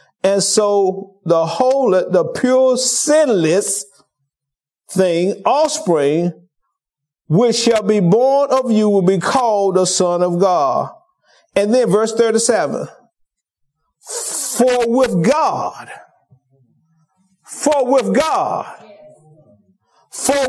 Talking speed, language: 95 wpm, English